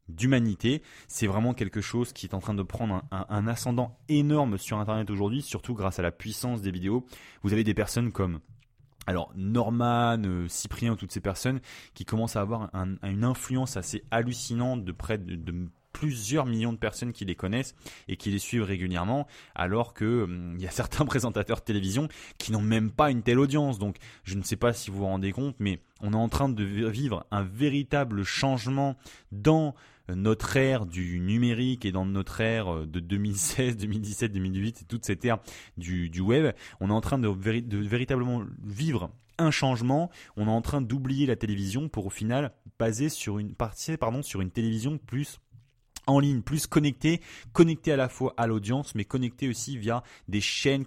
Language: French